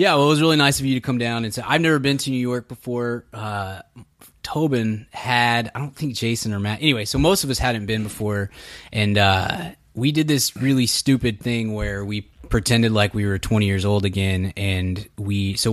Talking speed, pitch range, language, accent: 220 wpm, 100-130 Hz, English, American